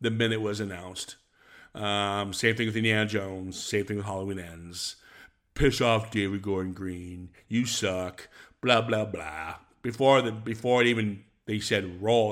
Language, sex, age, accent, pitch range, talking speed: English, male, 50-69, American, 95-115 Hz, 160 wpm